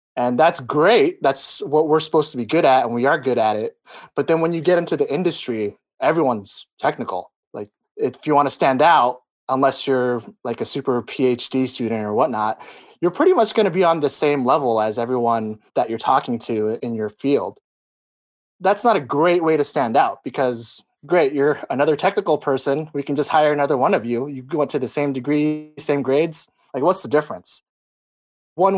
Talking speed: 200 wpm